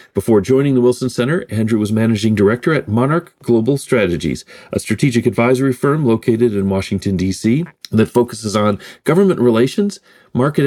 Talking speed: 150 wpm